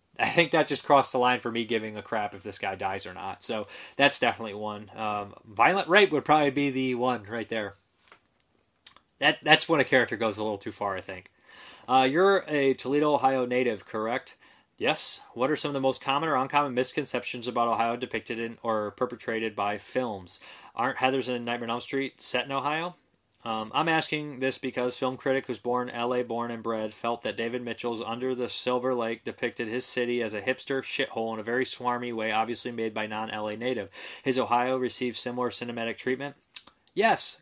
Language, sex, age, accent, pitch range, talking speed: English, male, 20-39, American, 110-135 Hz, 200 wpm